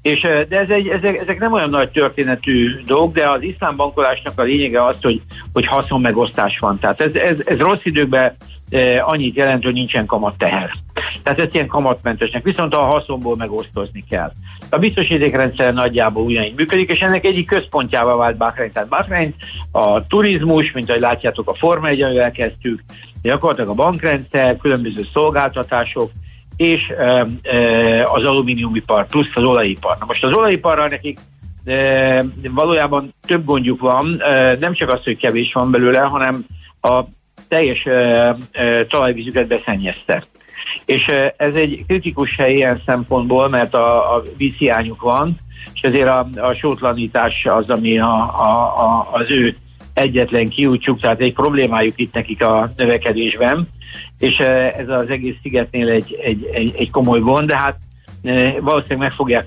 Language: Hungarian